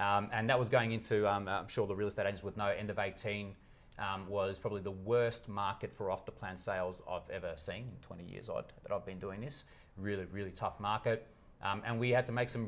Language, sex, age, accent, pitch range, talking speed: English, male, 30-49, Australian, 95-110 Hz, 230 wpm